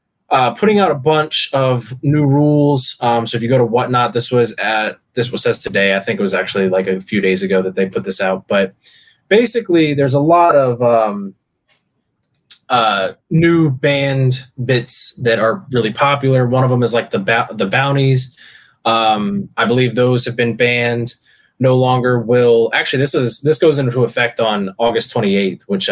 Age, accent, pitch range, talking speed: 20-39, American, 115-145 Hz, 190 wpm